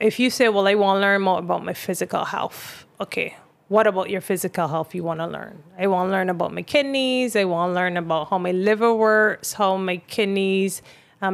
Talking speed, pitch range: 230 wpm, 175-210 Hz